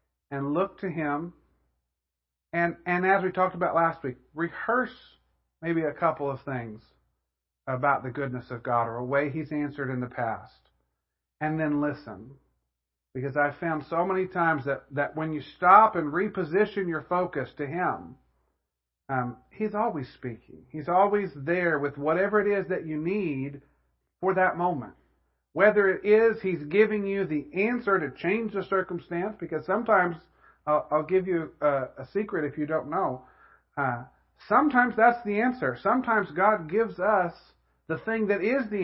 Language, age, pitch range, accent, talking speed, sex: English, 50-69, 125-185 Hz, American, 165 wpm, male